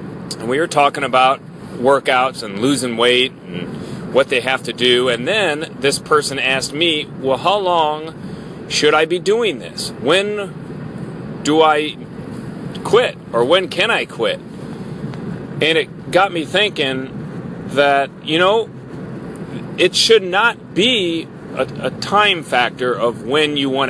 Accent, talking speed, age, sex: American, 145 wpm, 40-59, male